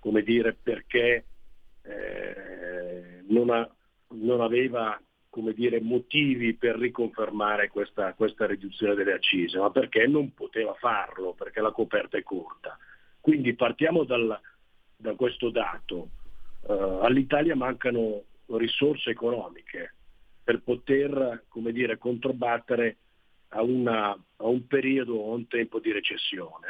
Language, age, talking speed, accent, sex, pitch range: Italian, 40-59, 125 wpm, native, male, 110-135 Hz